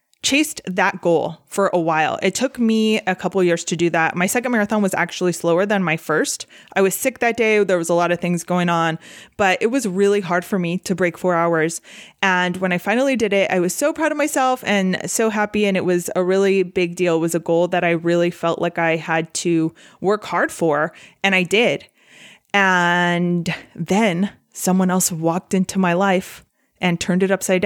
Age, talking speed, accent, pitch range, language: 20-39, 220 wpm, American, 170-200 Hz, English